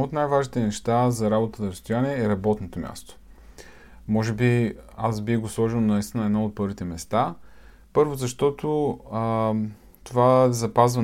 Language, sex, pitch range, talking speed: Bulgarian, male, 95-120 Hz, 145 wpm